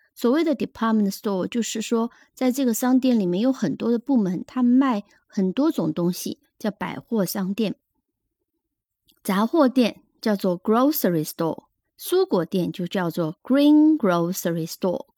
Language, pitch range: Chinese, 190-265 Hz